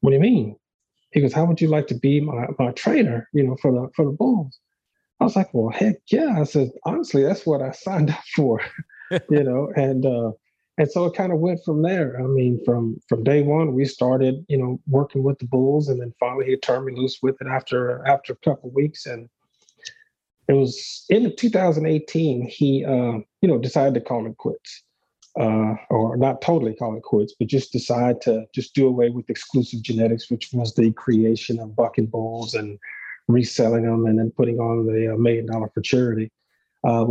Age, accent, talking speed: 30-49, American, 210 wpm